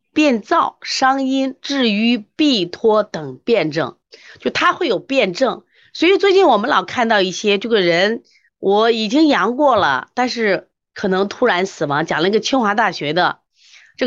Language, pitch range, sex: Chinese, 180-270 Hz, female